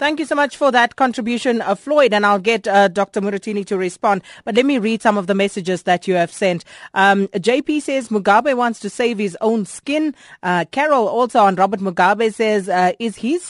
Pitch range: 190-240 Hz